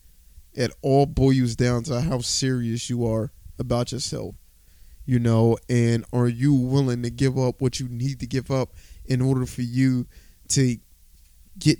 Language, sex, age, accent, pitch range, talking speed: English, male, 20-39, American, 115-145 Hz, 165 wpm